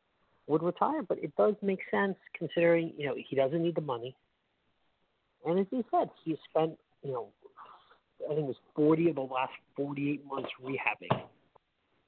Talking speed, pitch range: 170 wpm, 130-170 Hz